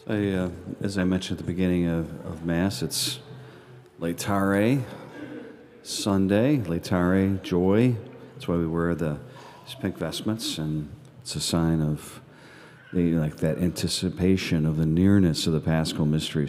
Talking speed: 145 wpm